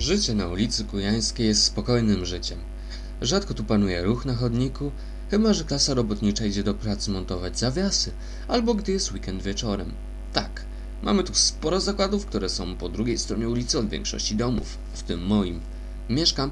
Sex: male